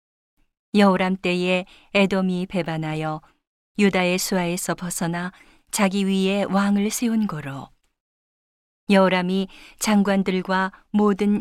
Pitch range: 165-205 Hz